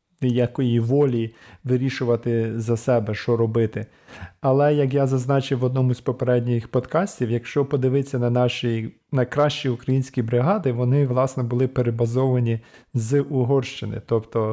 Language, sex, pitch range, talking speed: Ukrainian, male, 115-130 Hz, 125 wpm